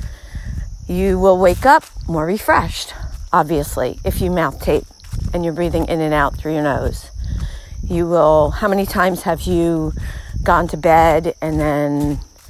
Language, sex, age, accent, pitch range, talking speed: English, female, 50-69, American, 135-175 Hz, 155 wpm